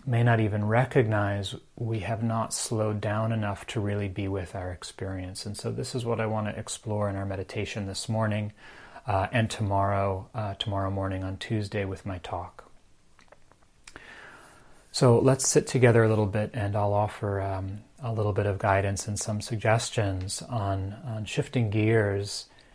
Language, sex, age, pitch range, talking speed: English, male, 30-49, 100-115 Hz, 165 wpm